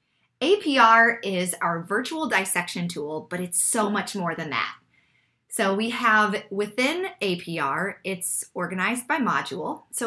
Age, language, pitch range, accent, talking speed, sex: 20-39, English, 165-215 Hz, American, 135 wpm, female